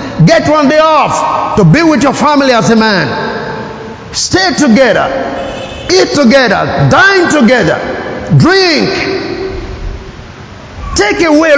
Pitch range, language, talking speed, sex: 175-290 Hz, English, 110 wpm, male